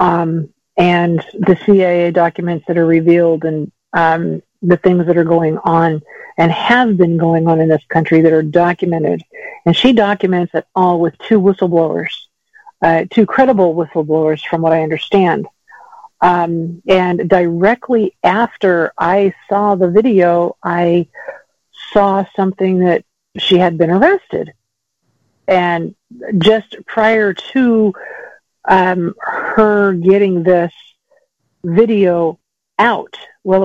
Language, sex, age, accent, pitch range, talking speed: English, female, 50-69, American, 170-205 Hz, 125 wpm